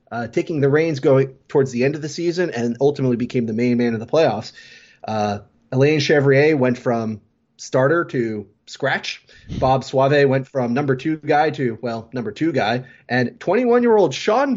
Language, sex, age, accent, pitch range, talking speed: English, male, 30-49, American, 120-150 Hz, 175 wpm